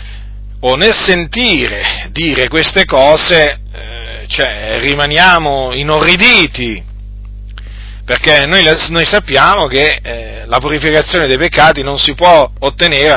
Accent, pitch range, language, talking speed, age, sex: native, 105-155 Hz, Italian, 110 wpm, 40-59, male